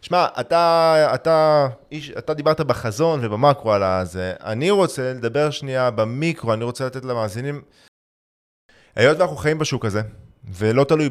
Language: Hebrew